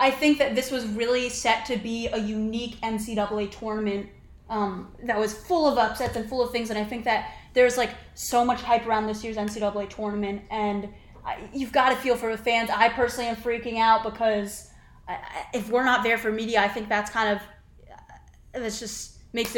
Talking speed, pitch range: 210 wpm, 220-255 Hz